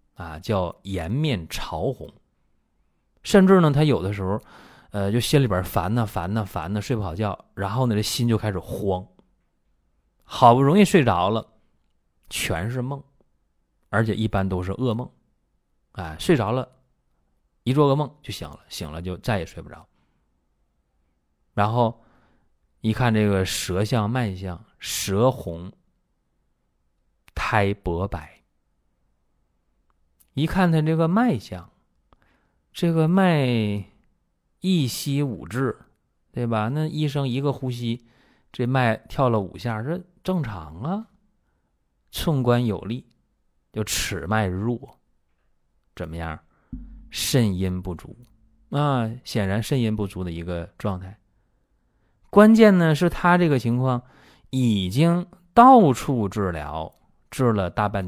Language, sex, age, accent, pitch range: Chinese, male, 30-49, native, 85-130 Hz